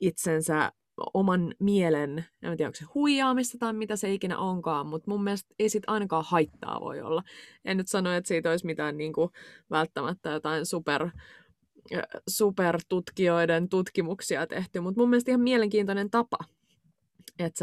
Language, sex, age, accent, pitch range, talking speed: Finnish, female, 20-39, native, 155-195 Hz, 150 wpm